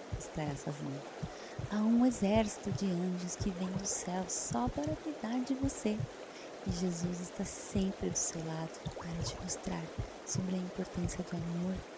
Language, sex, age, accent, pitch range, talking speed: Portuguese, female, 20-39, Brazilian, 180-225 Hz, 155 wpm